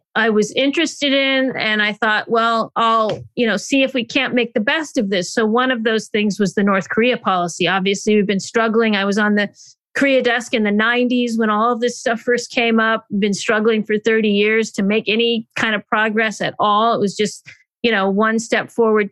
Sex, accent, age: female, American, 40-59